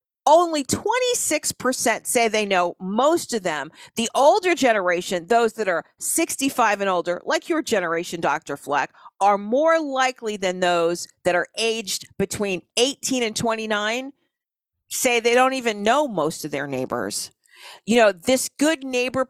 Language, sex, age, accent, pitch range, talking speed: English, female, 50-69, American, 180-255 Hz, 150 wpm